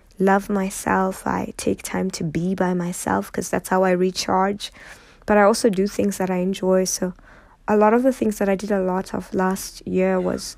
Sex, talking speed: female, 210 wpm